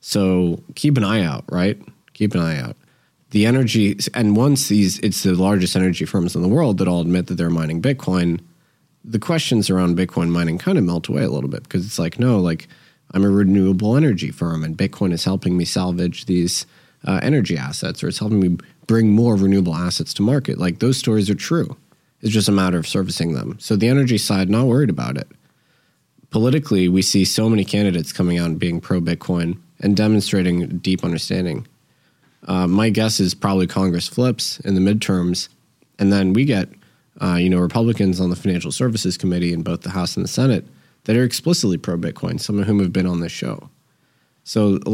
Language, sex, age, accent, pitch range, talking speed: English, male, 20-39, American, 90-110 Hz, 205 wpm